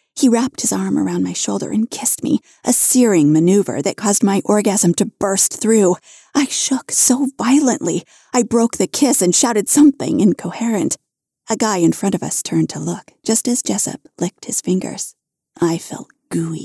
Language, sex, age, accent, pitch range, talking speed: English, female, 40-59, American, 180-250 Hz, 180 wpm